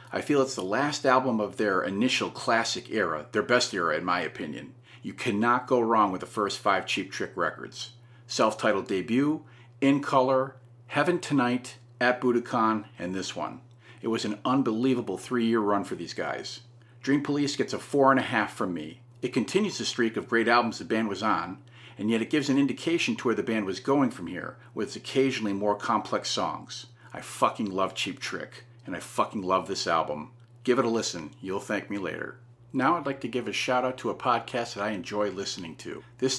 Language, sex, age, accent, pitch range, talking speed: English, male, 40-59, American, 115-130 Hz, 205 wpm